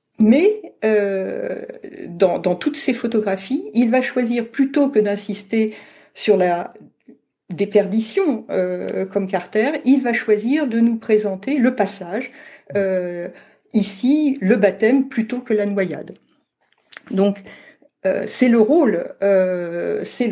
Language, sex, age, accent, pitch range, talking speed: French, female, 50-69, French, 200-260 Hz, 125 wpm